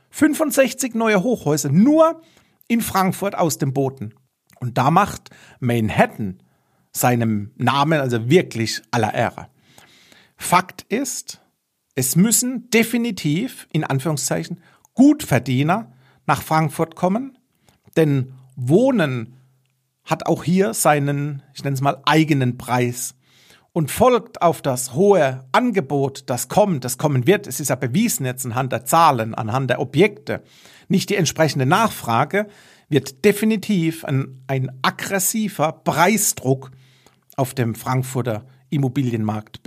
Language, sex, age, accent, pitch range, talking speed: German, male, 50-69, German, 130-190 Hz, 120 wpm